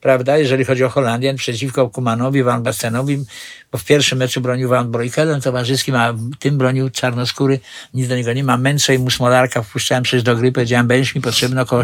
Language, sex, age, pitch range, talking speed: Polish, male, 60-79, 120-155 Hz, 200 wpm